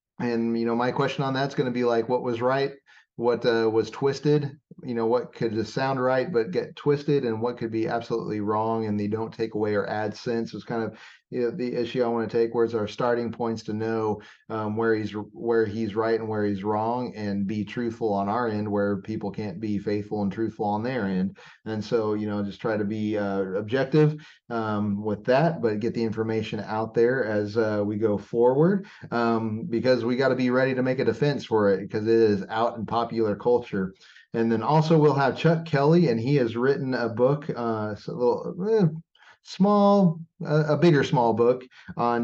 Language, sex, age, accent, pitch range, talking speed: English, male, 30-49, American, 110-130 Hz, 215 wpm